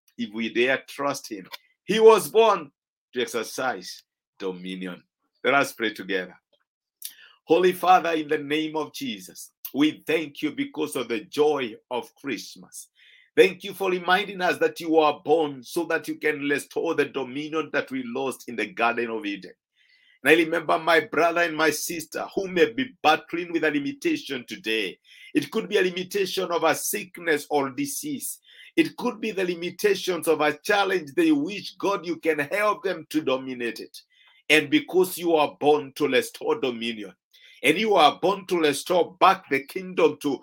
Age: 50-69